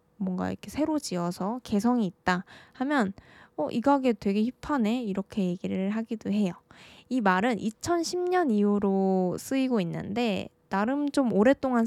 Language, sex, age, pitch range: Korean, female, 20-39, 190-255 Hz